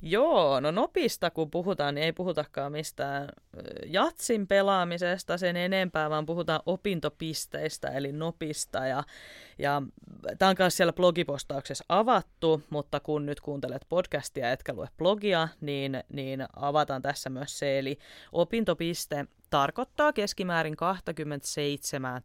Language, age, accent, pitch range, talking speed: Finnish, 20-39, native, 135-175 Hz, 115 wpm